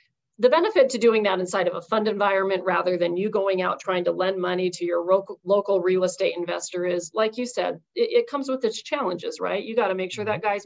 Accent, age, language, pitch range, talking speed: American, 40-59, English, 180-225 Hz, 250 wpm